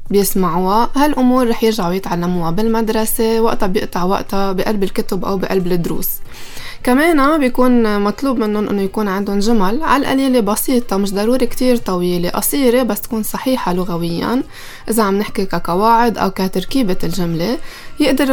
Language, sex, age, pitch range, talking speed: Arabic, female, 20-39, 190-235 Hz, 140 wpm